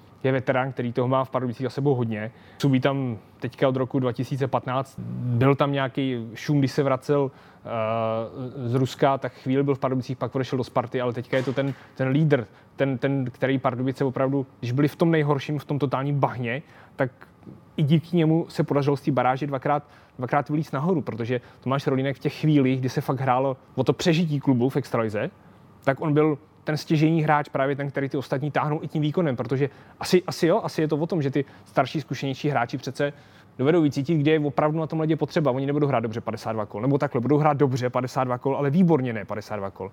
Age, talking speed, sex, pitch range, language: 20-39, 215 wpm, male, 125-145 Hz, Czech